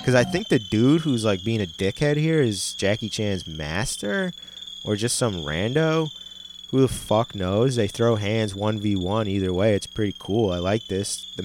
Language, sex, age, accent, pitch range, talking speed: English, male, 20-39, American, 95-110 Hz, 190 wpm